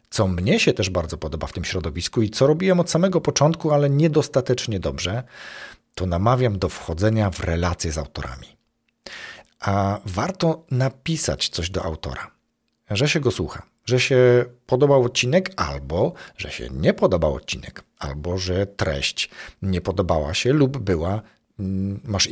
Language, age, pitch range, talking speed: Polish, 40-59, 90-130 Hz, 150 wpm